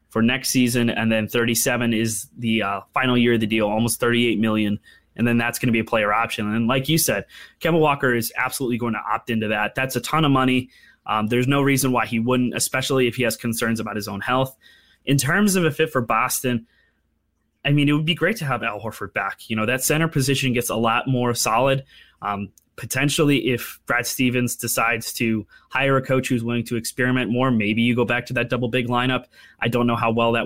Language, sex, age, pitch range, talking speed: English, male, 20-39, 110-130 Hz, 230 wpm